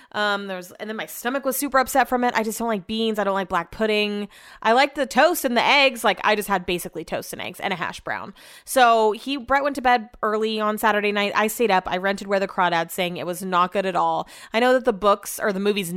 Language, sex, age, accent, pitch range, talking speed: English, female, 20-39, American, 195-270 Hz, 275 wpm